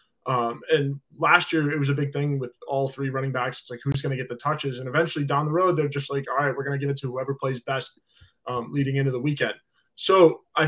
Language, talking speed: English, 270 wpm